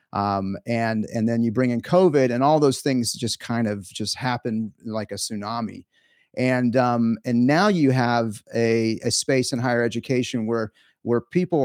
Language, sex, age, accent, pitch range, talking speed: English, male, 30-49, American, 110-130 Hz, 180 wpm